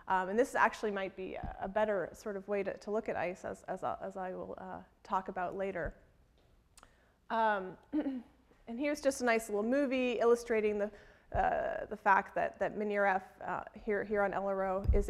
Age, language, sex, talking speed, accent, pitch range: 30-49, English, female, 195 wpm, American, 195-235 Hz